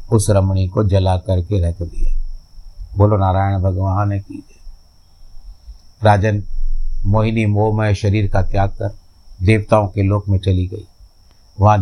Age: 50-69